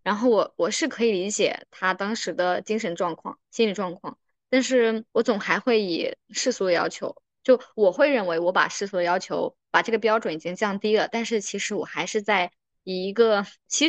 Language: Chinese